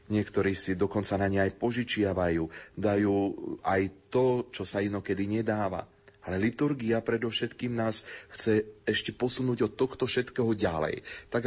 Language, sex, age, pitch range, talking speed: Slovak, male, 30-49, 95-125 Hz, 135 wpm